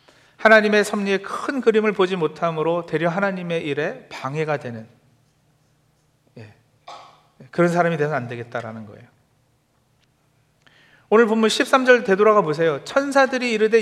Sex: male